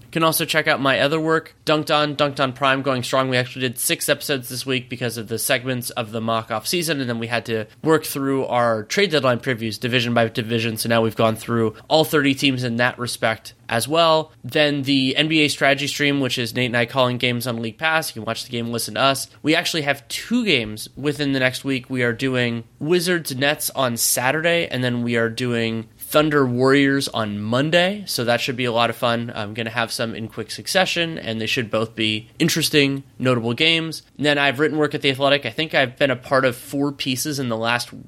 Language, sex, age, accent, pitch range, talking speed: English, male, 20-39, American, 115-145 Hz, 230 wpm